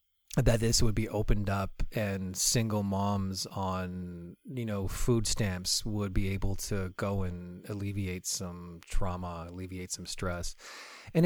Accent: American